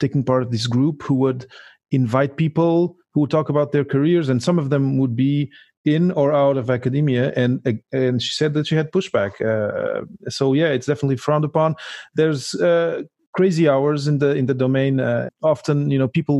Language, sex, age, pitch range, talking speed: English, male, 30-49, 120-145 Hz, 200 wpm